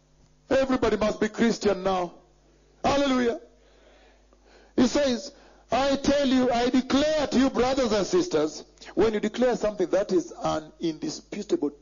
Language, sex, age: English, male, 50-69